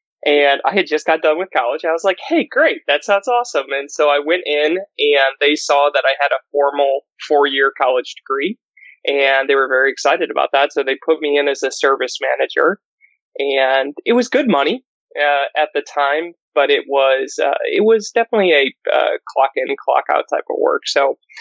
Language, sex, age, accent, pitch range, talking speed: English, male, 20-39, American, 135-150 Hz, 205 wpm